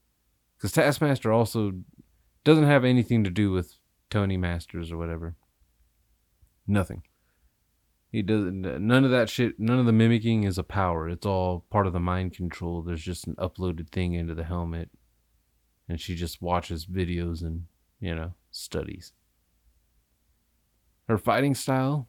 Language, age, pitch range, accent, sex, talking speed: English, 30-49, 85-105 Hz, American, male, 145 wpm